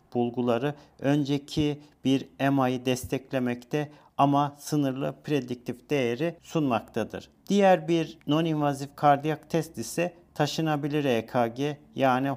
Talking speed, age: 90 wpm, 50-69